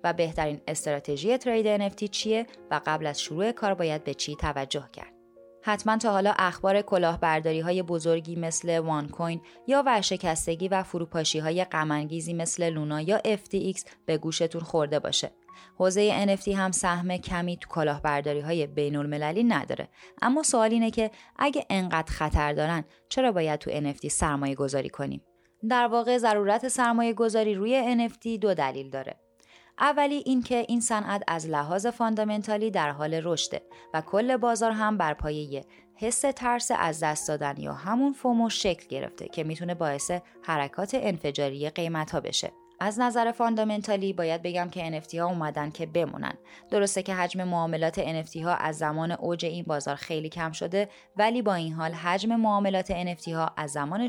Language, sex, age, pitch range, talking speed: Persian, female, 20-39, 155-215 Hz, 155 wpm